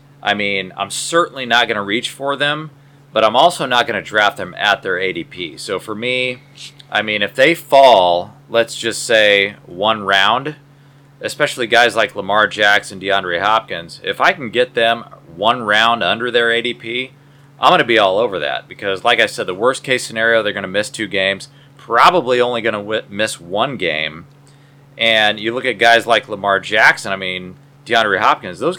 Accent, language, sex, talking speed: American, English, male, 190 wpm